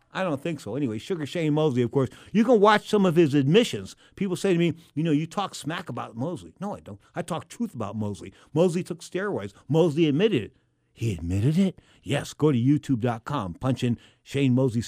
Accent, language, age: American, English, 50-69